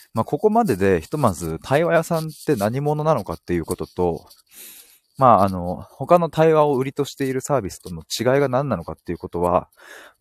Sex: male